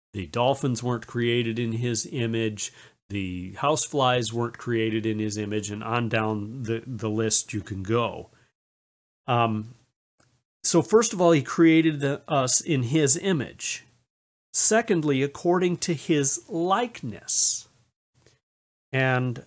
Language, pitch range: English, 110-170 Hz